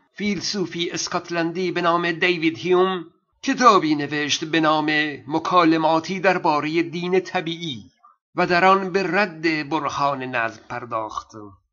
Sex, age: male, 50-69